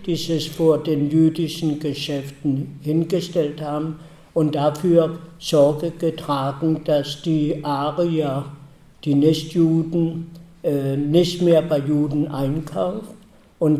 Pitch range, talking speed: 145-165 Hz, 100 wpm